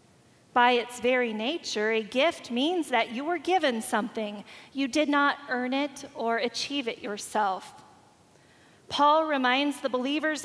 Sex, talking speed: female, 145 wpm